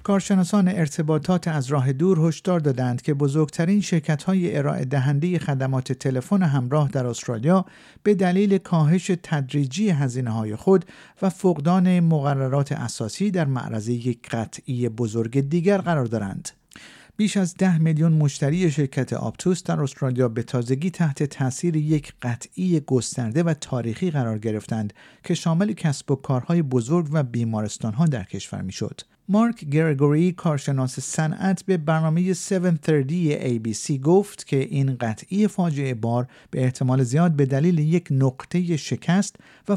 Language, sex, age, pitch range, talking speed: Persian, male, 50-69, 125-175 Hz, 135 wpm